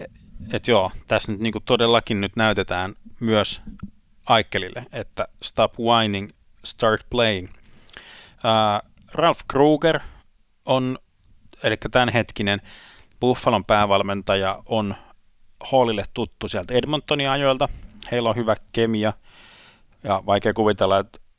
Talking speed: 95 wpm